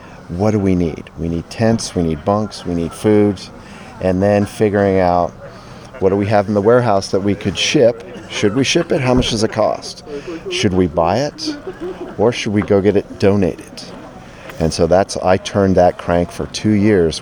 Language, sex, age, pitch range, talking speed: English, male, 40-59, 85-105 Hz, 200 wpm